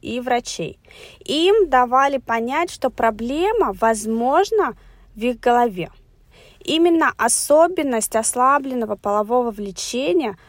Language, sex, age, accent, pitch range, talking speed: Russian, female, 20-39, native, 205-280 Hz, 90 wpm